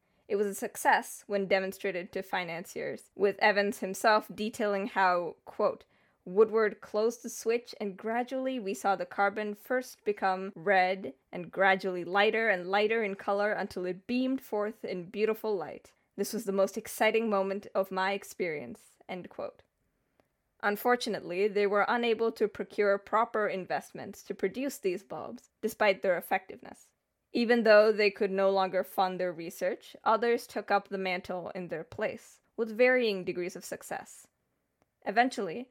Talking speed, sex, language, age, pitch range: 150 wpm, female, English, 10-29, 195-230 Hz